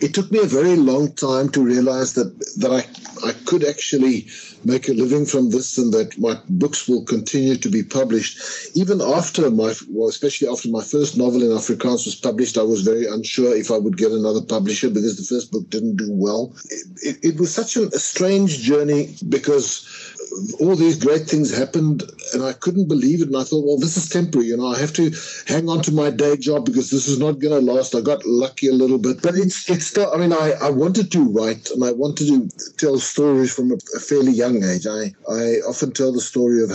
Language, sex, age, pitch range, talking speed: English, male, 60-79, 120-150 Hz, 230 wpm